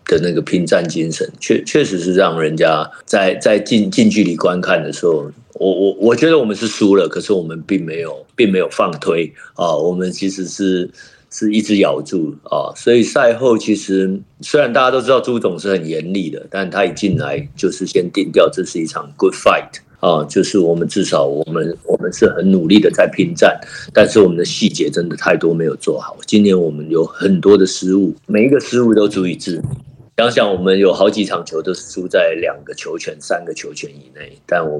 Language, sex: Chinese, male